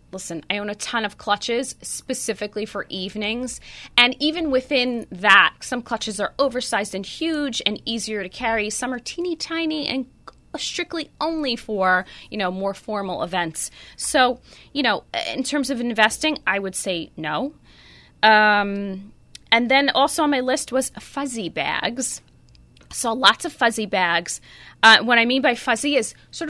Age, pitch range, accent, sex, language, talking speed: 20-39, 205-270 Hz, American, female, English, 160 wpm